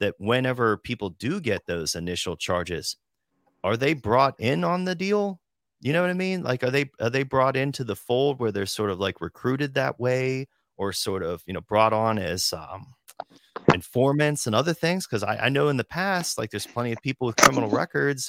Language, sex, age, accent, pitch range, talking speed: English, male, 30-49, American, 100-135 Hz, 215 wpm